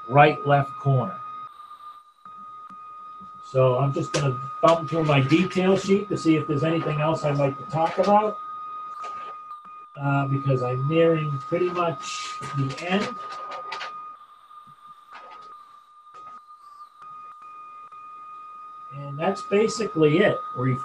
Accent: American